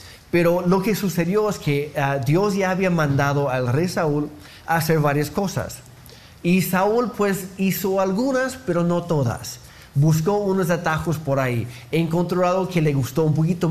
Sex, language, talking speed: male, Spanish, 165 wpm